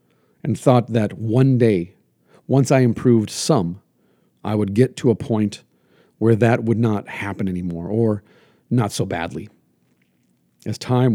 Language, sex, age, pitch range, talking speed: English, male, 50-69, 95-125 Hz, 145 wpm